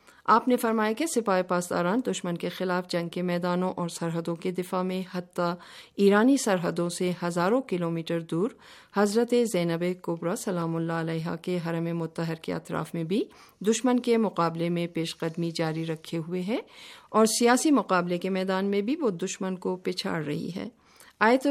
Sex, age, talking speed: female, 50-69, 170 wpm